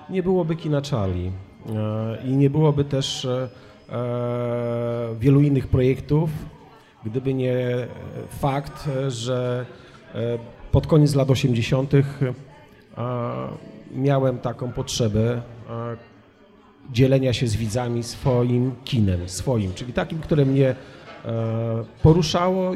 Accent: native